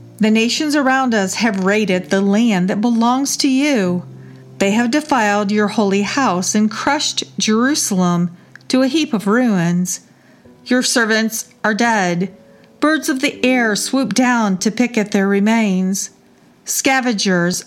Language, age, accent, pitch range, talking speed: English, 50-69, American, 190-245 Hz, 145 wpm